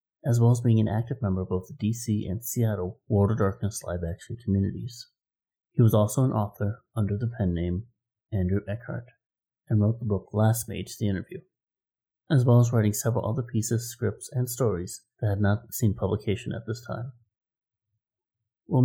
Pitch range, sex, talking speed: 105-125 Hz, male, 180 wpm